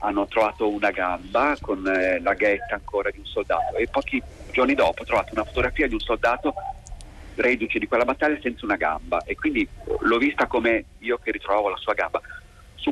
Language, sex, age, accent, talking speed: Italian, male, 40-59, native, 195 wpm